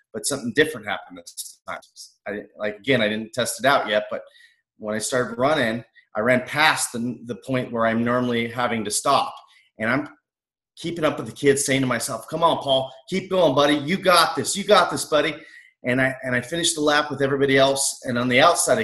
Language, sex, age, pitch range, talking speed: English, male, 30-49, 125-170 Hz, 215 wpm